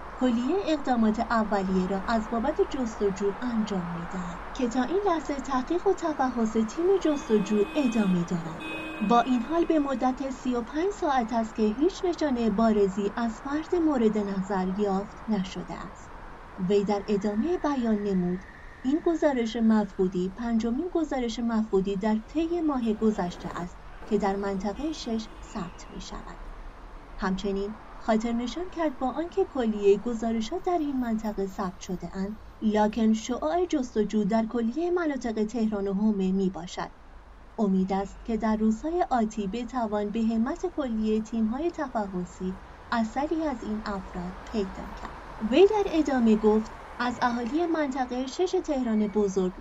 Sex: female